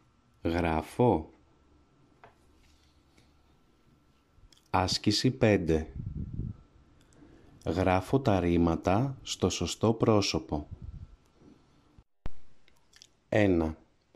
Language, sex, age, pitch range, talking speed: English, male, 30-49, 80-105 Hz, 40 wpm